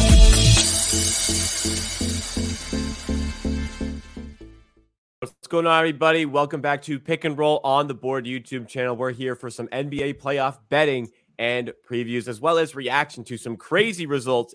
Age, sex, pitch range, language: 20-39, male, 110-130 Hz, English